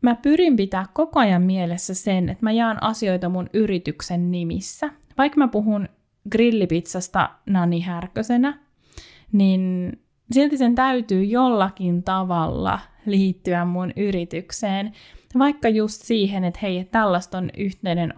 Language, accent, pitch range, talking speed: Finnish, native, 180-230 Hz, 120 wpm